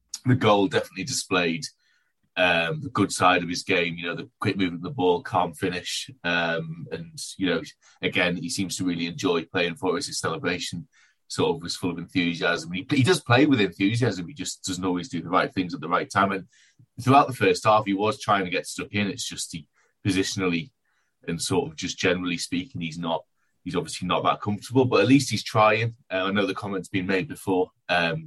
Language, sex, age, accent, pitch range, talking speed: English, male, 30-49, British, 90-110 Hz, 220 wpm